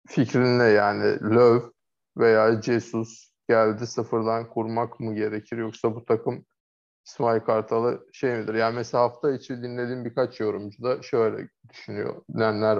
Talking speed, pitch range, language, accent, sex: 130 wpm, 115-130 Hz, Turkish, native, male